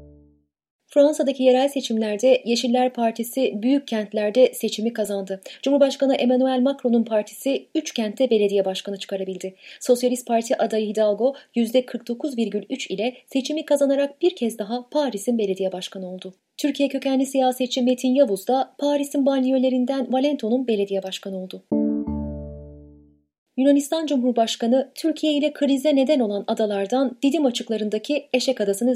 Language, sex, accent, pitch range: Turkish, female, native, 205-275 Hz